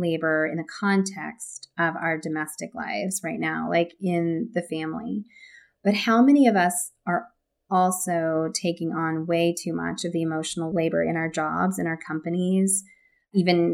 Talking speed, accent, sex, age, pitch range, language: 160 wpm, American, female, 30-49, 170-220 Hz, English